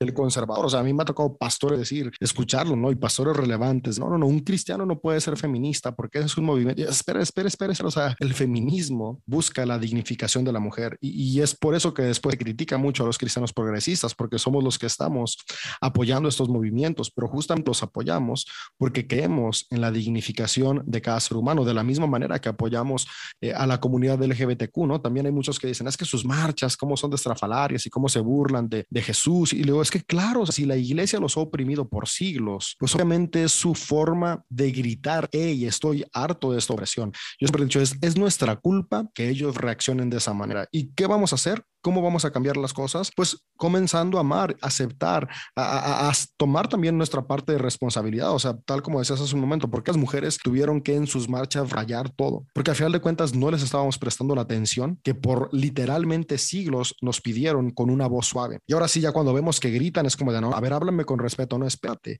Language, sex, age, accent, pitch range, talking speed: Spanish, male, 30-49, Mexican, 125-150 Hz, 225 wpm